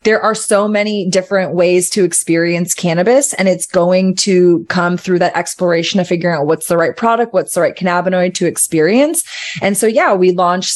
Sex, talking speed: female, 195 wpm